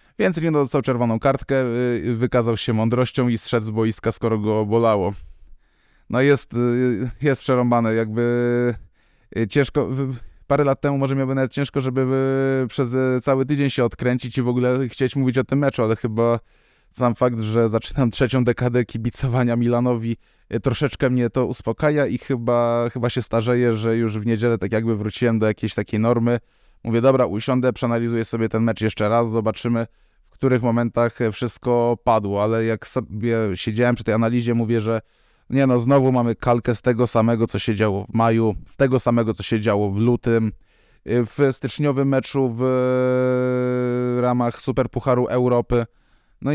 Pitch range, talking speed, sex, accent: 115-130 Hz, 160 wpm, male, native